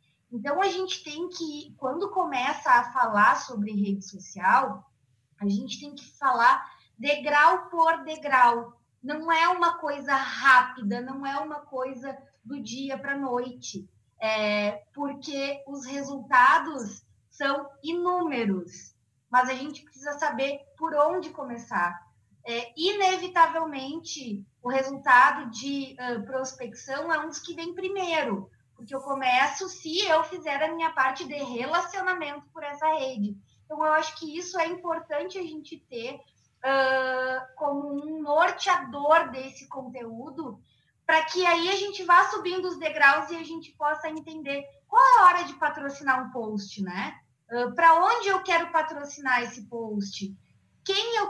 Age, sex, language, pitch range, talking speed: 20-39, female, Portuguese, 245-325 Hz, 140 wpm